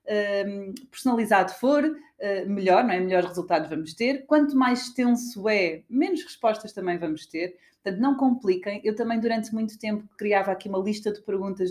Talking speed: 165 wpm